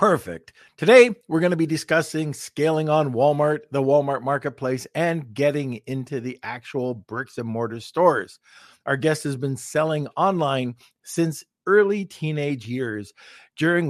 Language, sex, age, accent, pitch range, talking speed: English, male, 50-69, American, 120-155 Hz, 145 wpm